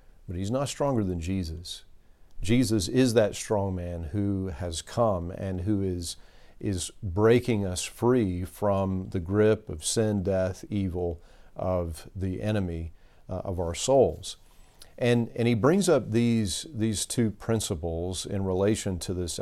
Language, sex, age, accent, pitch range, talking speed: English, male, 40-59, American, 90-110 Hz, 145 wpm